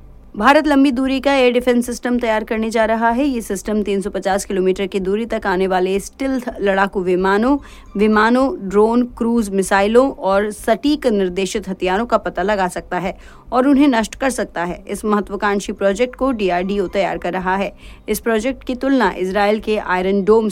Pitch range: 185-230 Hz